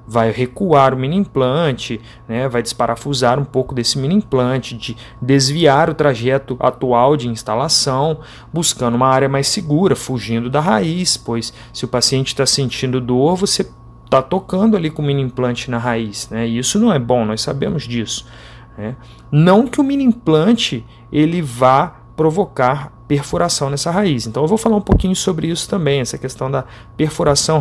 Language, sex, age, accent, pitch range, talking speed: Portuguese, male, 30-49, Brazilian, 120-160 Hz, 170 wpm